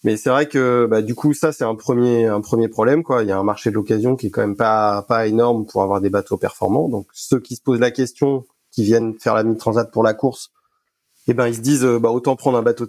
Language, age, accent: French, 20-39, French